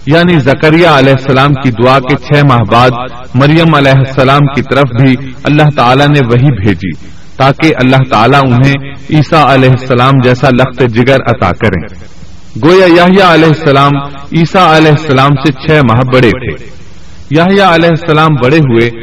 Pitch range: 120-155 Hz